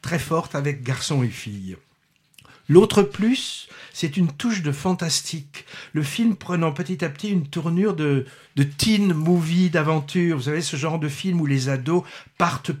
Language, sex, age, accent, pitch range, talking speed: French, male, 60-79, French, 140-180 Hz, 170 wpm